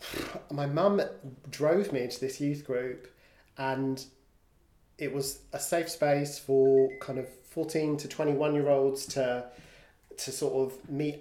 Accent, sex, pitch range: British, male, 125-145 Hz